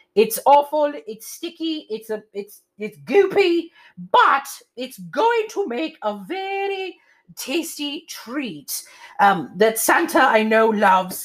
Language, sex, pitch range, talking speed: English, female, 220-345 Hz, 130 wpm